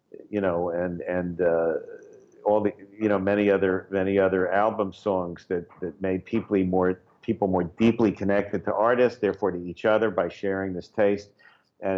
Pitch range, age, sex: 95-115 Hz, 50-69, male